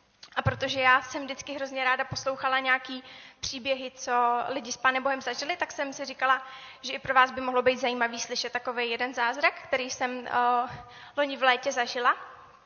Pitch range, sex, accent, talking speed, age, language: 250-280 Hz, female, native, 185 wpm, 20-39, Czech